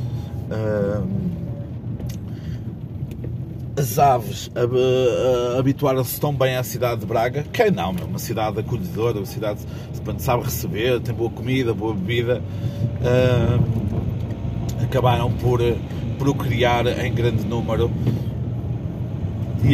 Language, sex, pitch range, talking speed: Portuguese, male, 110-125 Hz, 100 wpm